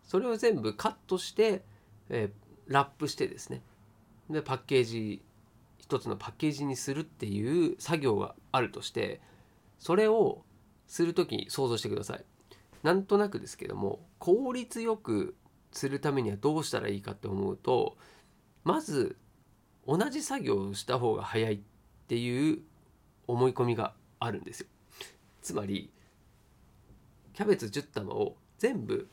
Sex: male